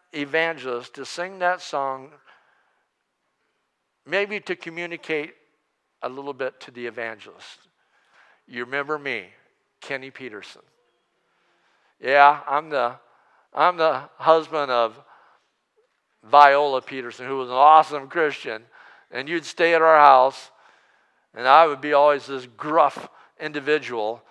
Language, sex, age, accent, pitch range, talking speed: English, male, 50-69, American, 135-185 Hz, 115 wpm